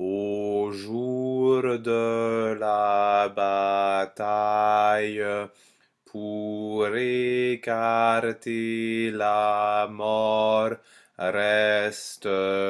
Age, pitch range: 30-49, 100-110 Hz